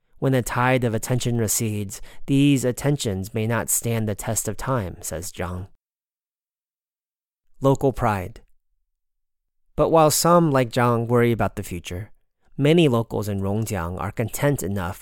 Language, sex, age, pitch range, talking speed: English, male, 30-49, 100-130 Hz, 140 wpm